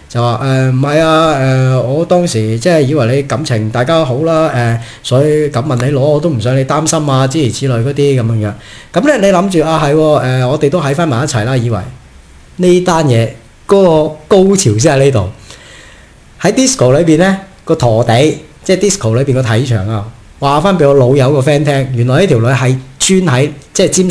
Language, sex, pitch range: Chinese, male, 120-170 Hz